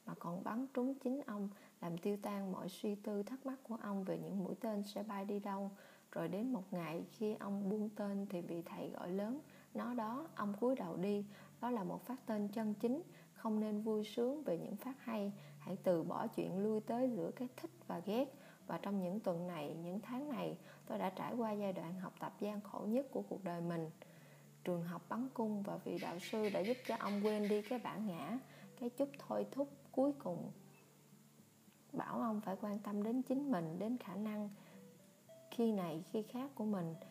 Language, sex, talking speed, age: Vietnamese, female, 215 wpm, 20-39